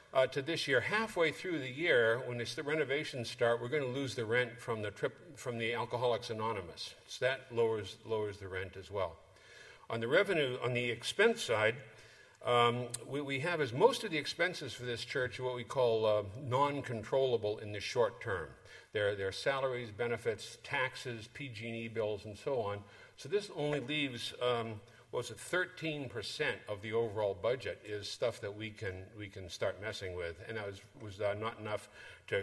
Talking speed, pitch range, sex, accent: 195 wpm, 105-125 Hz, male, American